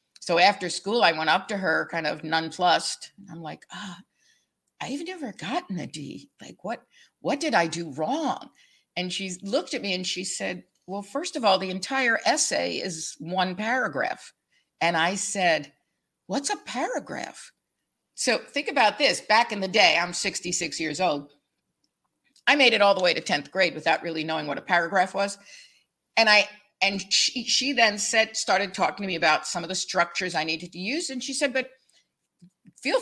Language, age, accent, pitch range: English, 50-69, American, 175-260 Hz